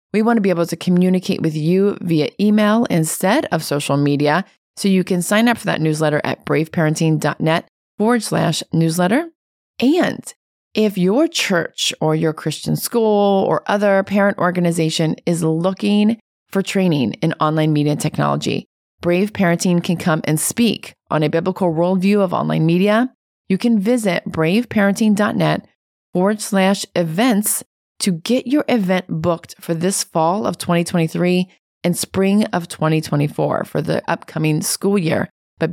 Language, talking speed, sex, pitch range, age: English, 145 wpm, female, 165-210 Hz, 30-49